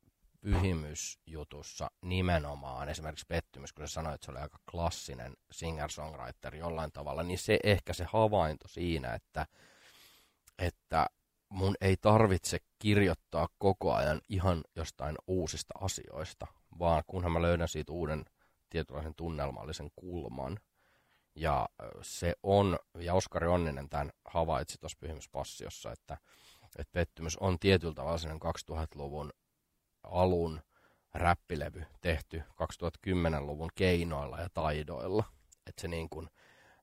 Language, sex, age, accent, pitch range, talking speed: Finnish, male, 30-49, native, 75-90 Hz, 115 wpm